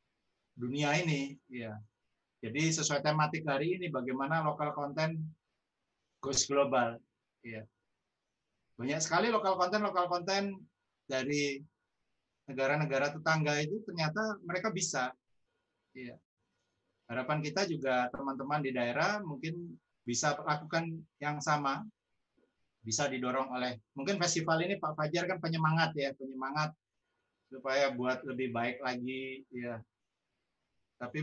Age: 30-49